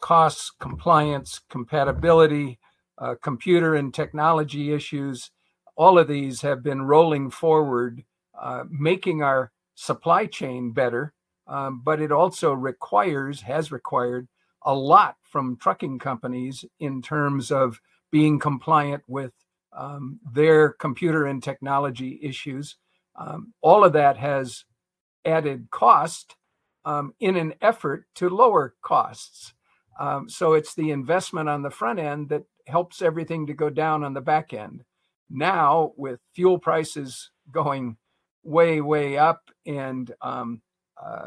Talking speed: 130 wpm